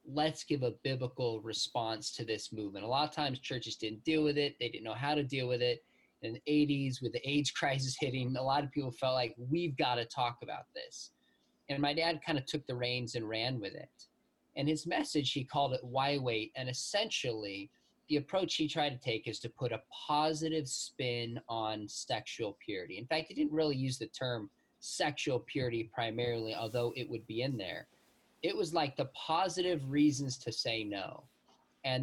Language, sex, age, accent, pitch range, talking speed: English, male, 20-39, American, 120-150 Hz, 205 wpm